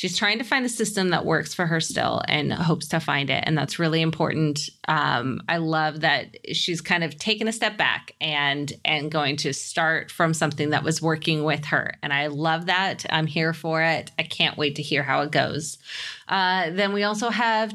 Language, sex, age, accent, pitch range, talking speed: English, female, 20-39, American, 160-215 Hz, 215 wpm